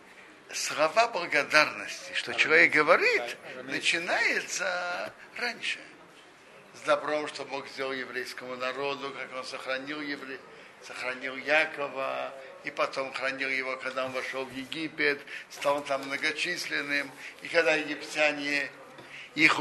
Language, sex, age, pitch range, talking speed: Russian, male, 60-79, 135-190 Hz, 110 wpm